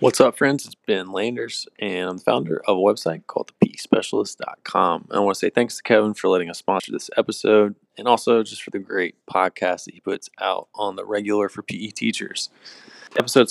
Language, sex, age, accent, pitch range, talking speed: English, male, 20-39, American, 100-120 Hz, 205 wpm